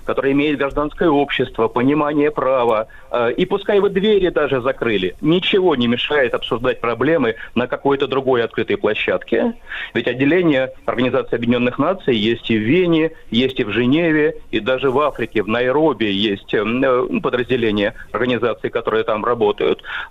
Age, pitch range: 30-49, 125-175 Hz